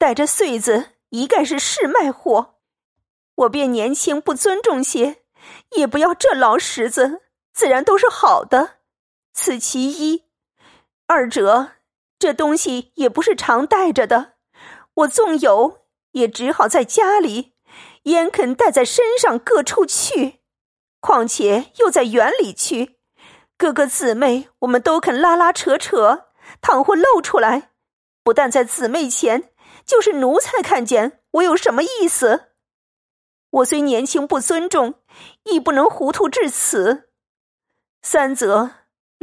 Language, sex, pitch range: Chinese, female, 250-365 Hz